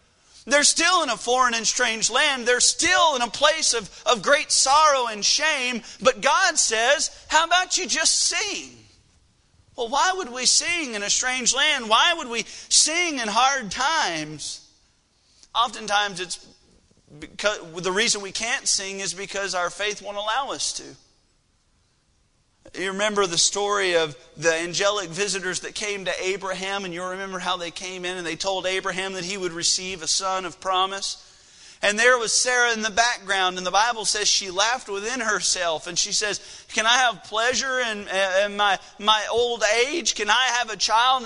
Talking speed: 180 wpm